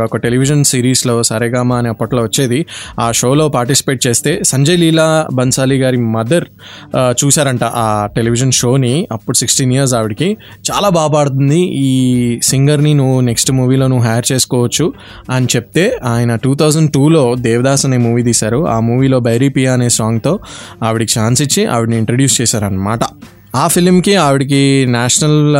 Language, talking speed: Telugu, 140 wpm